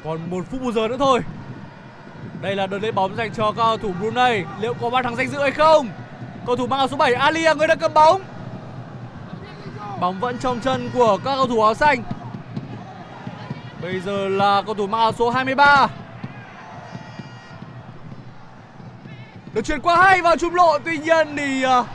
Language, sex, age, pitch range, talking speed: Vietnamese, male, 20-39, 225-290 Hz, 185 wpm